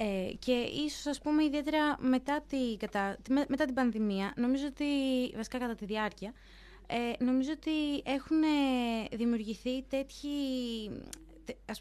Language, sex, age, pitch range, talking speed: Greek, female, 20-39, 210-260 Hz, 115 wpm